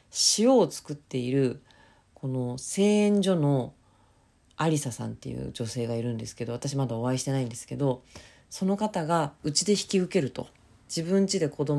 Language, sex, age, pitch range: Japanese, female, 40-59, 115-175 Hz